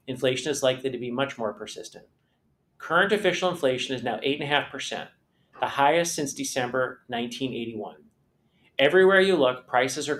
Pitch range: 120-150 Hz